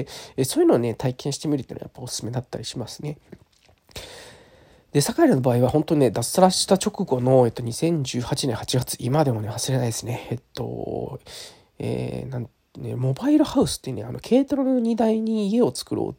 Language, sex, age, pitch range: Japanese, male, 20-39, 125-165 Hz